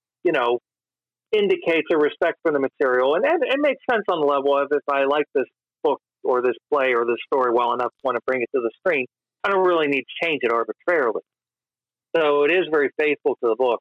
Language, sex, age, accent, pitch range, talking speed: English, male, 40-59, American, 120-185 Hz, 230 wpm